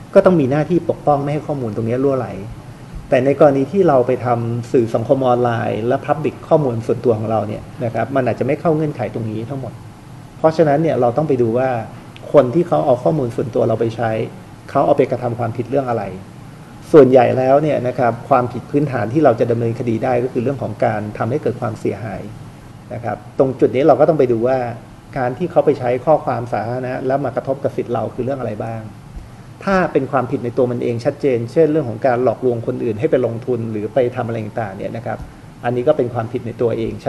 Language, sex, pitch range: Thai, male, 115-140 Hz